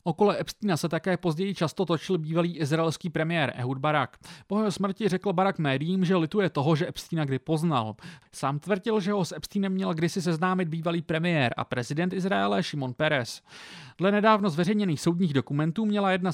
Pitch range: 150-195 Hz